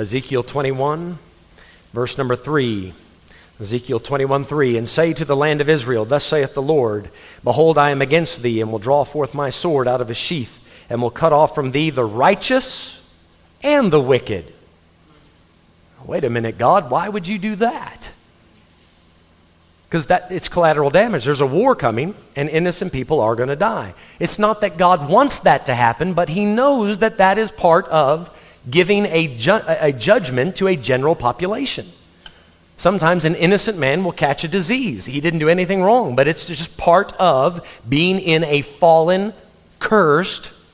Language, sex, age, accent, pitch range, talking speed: English, male, 40-59, American, 120-175 Hz, 175 wpm